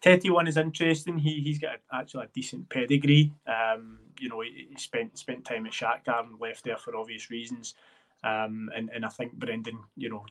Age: 20-39